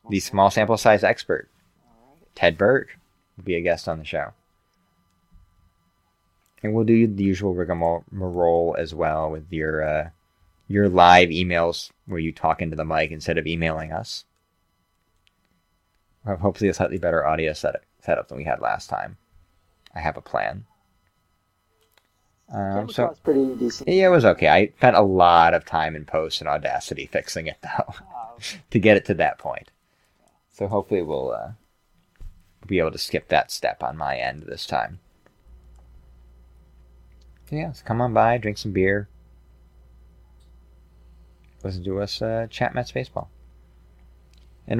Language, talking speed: English, 150 wpm